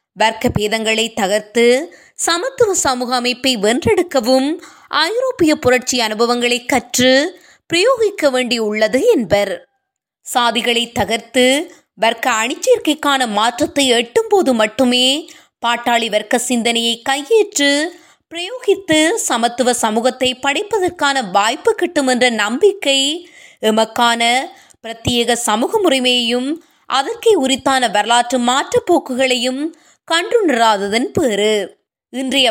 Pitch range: 240-320 Hz